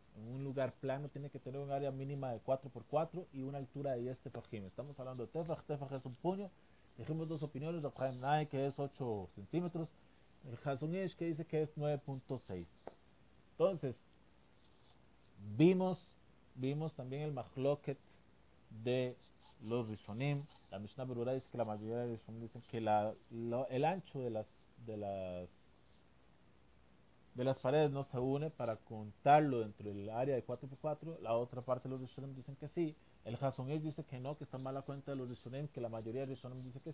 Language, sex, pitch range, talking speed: Spanish, male, 115-145 Hz, 180 wpm